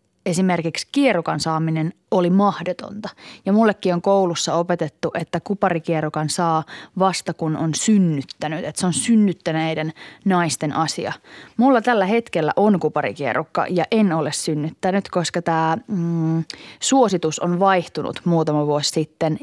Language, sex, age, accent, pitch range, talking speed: Finnish, female, 20-39, native, 155-190 Hz, 125 wpm